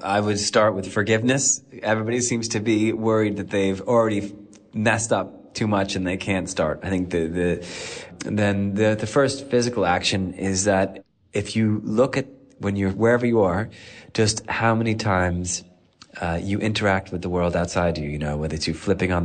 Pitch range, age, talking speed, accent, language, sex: 85-105 Hz, 30-49, 190 wpm, American, English, male